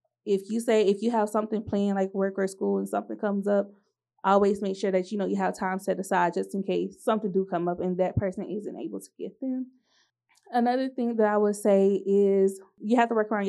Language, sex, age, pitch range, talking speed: English, female, 20-39, 195-220 Hz, 240 wpm